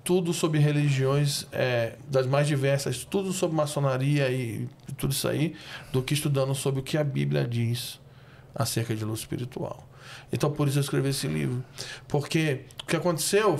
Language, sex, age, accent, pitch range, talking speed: Portuguese, male, 20-39, Brazilian, 125-145 Hz, 170 wpm